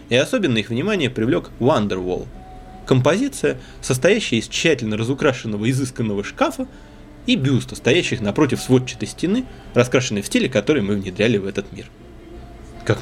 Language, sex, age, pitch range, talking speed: Russian, male, 20-39, 105-130 Hz, 135 wpm